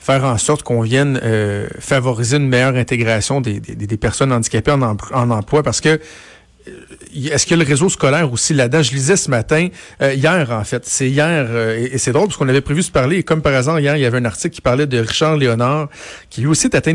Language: French